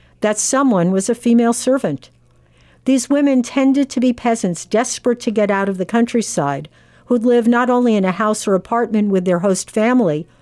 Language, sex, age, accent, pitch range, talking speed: English, female, 50-69, American, 185-240 Hz, 185 wpm